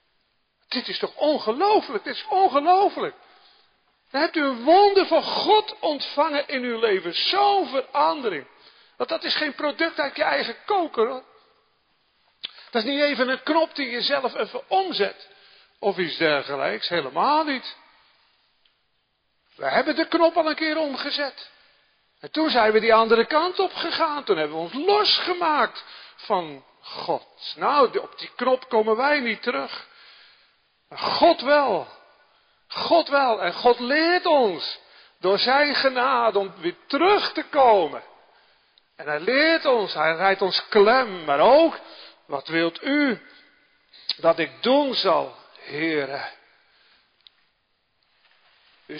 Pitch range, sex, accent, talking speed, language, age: 225-325 Hz, male, Dutch, 135 wpm, Dutch, 50-69